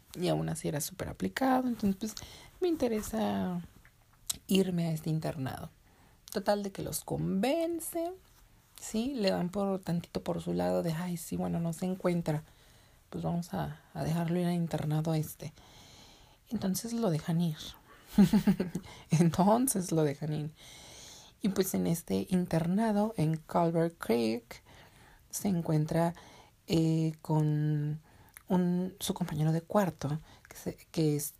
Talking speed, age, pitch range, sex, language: 135 wpm, 30-49, 145-190 Hz, female, Spanish